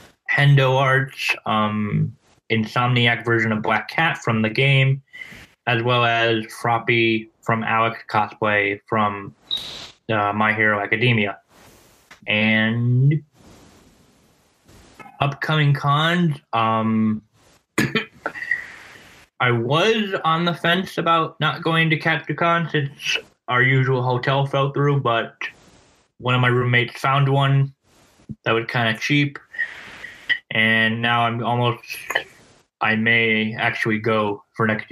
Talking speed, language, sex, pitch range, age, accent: 115 wpm, English, male, 110-140 Hz, 10-29, American